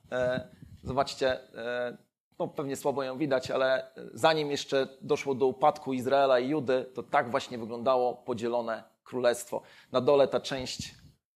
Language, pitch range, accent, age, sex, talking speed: Polish, 130-155 Hz, native, 30-49, male, 125 wpm